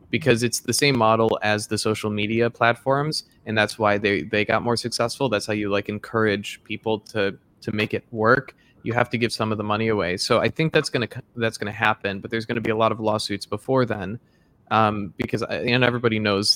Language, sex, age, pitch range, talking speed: English, male, 20-39, 105-125 Hz, 225 wpm